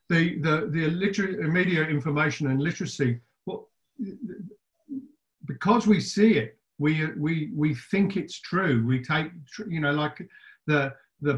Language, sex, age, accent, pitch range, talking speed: English, male, 50-69, British, 135-170 Hz, 130 wpm